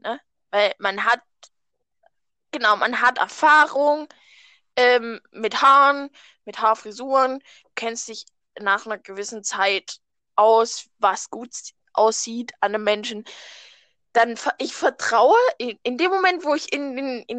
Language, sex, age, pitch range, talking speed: German, female, 10-29, 215-270 Hz, 135 wpm